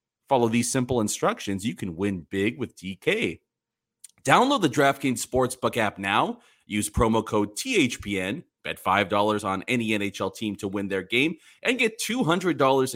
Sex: male